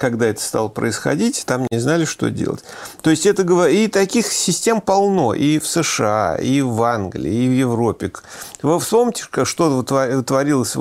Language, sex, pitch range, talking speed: Russian, male, 115-165 Hz, 165 wpm